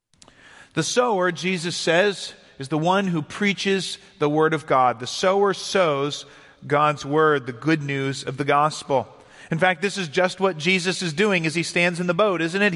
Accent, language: American, English